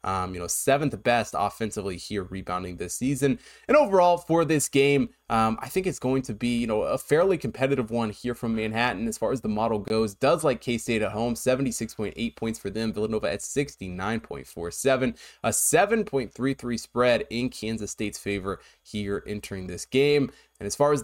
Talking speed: 185 wpm